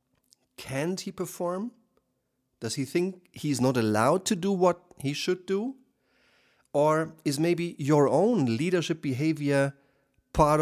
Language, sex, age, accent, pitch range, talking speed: German, male, 40-59, German, 125-170 Hz, 130 wpm